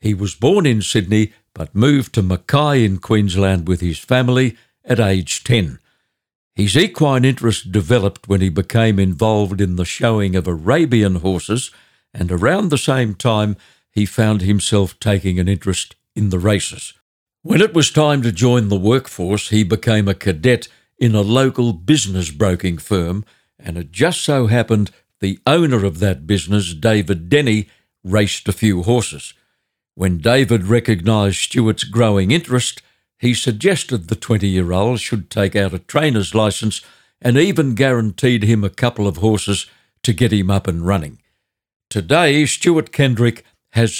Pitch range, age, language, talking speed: 100-125 Hz, 60-79, English, 155 wpm